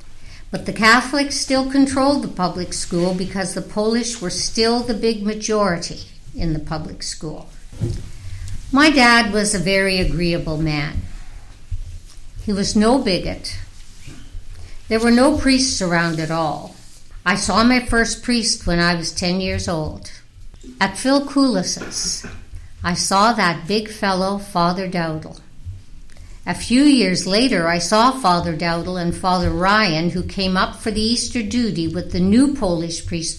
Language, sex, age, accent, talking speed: English, female, 60-79, American, 145 wpm